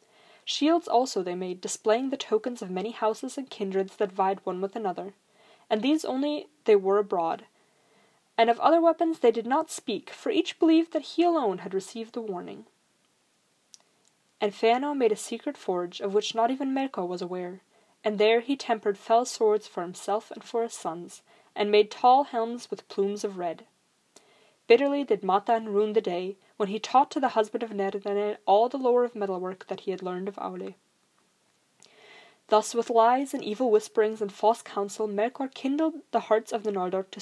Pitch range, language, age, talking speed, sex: 200-245 Hz, English, 20-39, 185 wpm, female